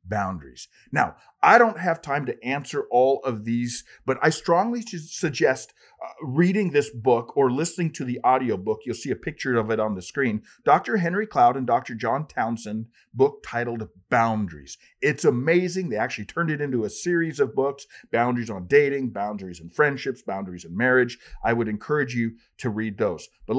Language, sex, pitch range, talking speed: English, male, 110-150 Hz, 180 wpm